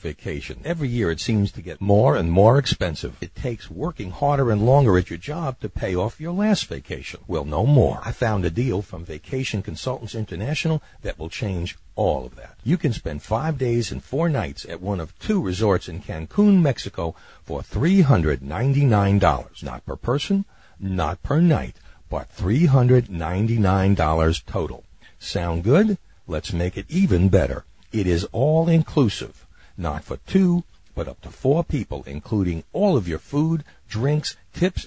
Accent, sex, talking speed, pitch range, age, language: American, male, 180 wpm, 90-140 Hz, 60-79, English